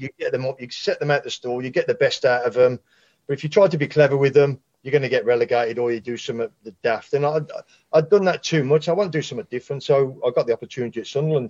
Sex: male